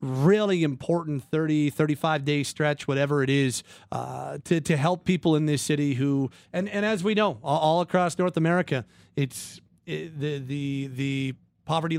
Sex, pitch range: male, 145-180 Hz